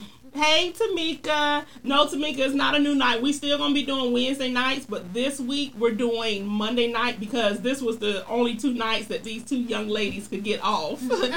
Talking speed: 205 wpm